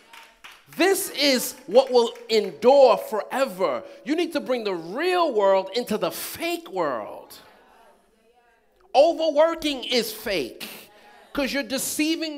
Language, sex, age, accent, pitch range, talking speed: English, male, 40-59, American, 230-310 Hz, 110 wpm